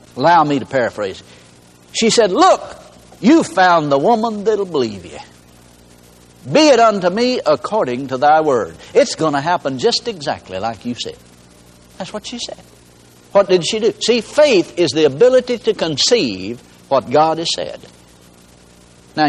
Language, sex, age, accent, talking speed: English, male, 60-79, American, 160 wpm